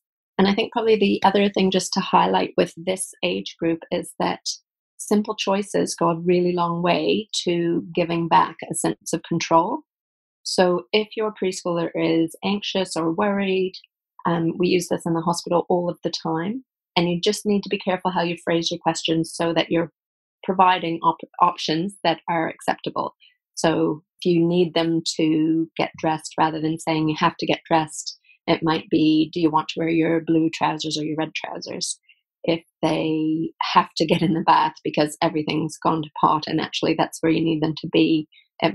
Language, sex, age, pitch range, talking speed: English, female, 30-49, 160-180 Hz, 190 wpm